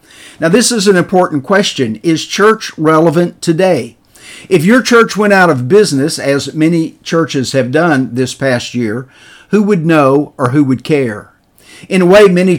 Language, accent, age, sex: English, American, 50-69, male